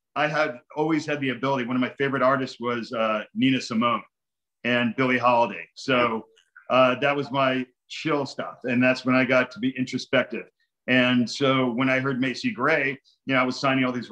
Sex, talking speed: male, 200 wpm